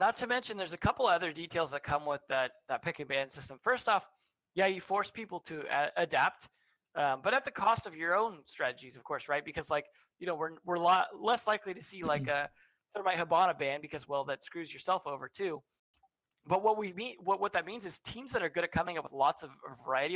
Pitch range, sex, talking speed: 150-195 Hz, male, 255 wpm